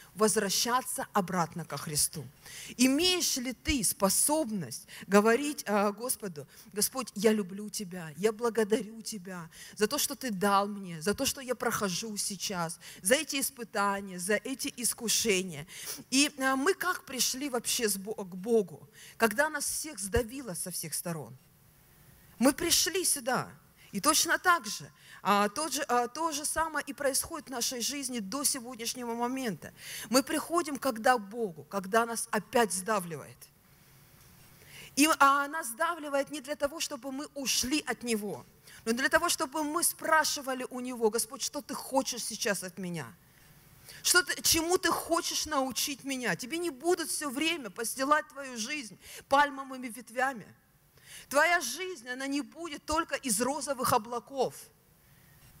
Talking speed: 145 wpm